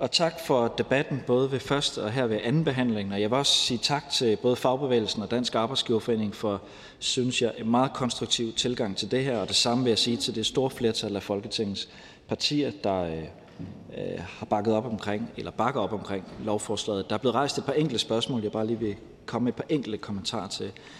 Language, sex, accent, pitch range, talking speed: Danish, male, native, 100-125 Hz, 225 wpm